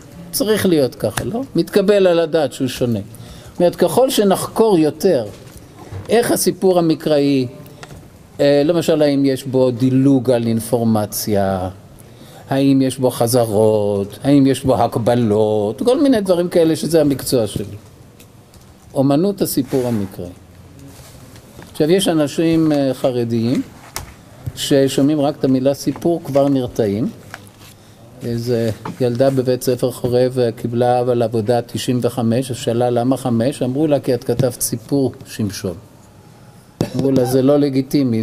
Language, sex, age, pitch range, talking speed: Hebrew, male, 50-69, 120-155 Hz, 125 wpm